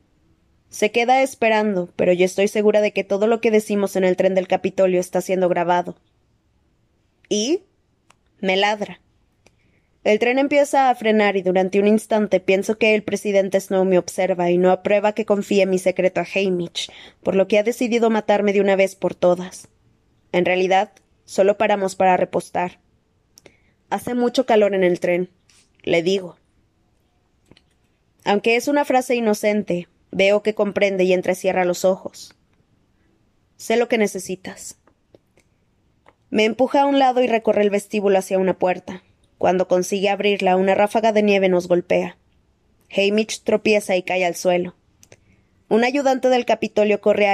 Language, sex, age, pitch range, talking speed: Spanish, female, 20-39, 185-210 Hz, 155 wpm